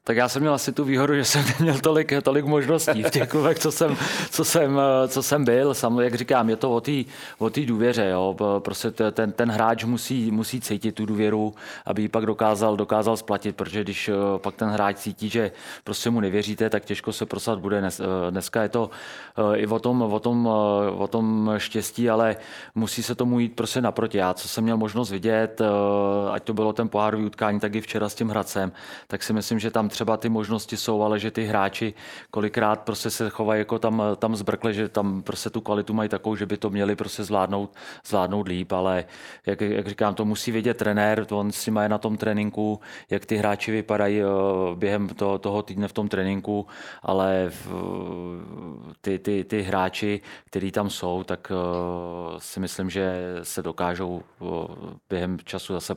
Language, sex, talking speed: Czech, male, 190 wpm